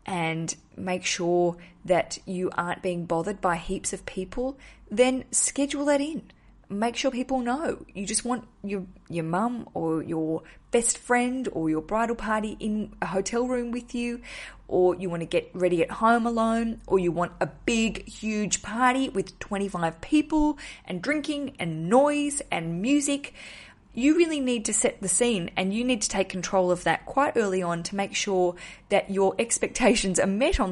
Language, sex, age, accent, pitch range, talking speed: English, female, 20-39, Australian, 180-245 Hz, 180 wpm